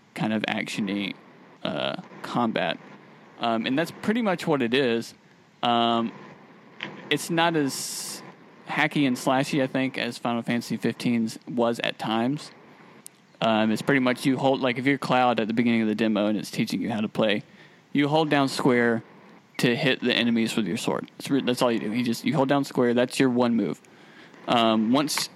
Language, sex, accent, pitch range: English, male, American, 115-140 Hz